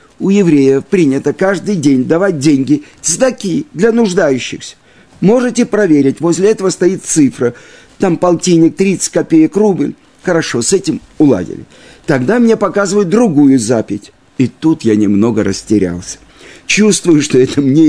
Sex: male